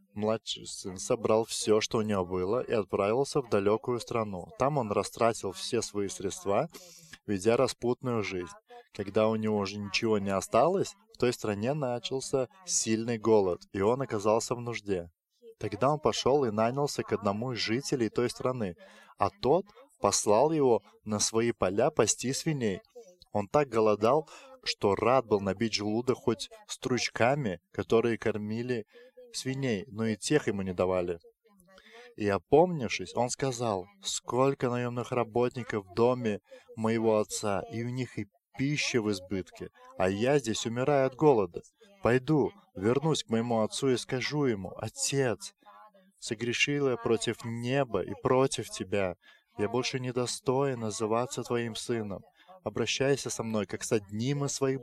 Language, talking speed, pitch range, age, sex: English, 145 wpm, 110-135 Hz, 20-39, male